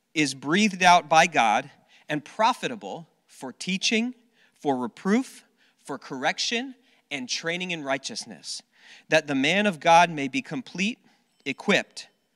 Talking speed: 125 wpm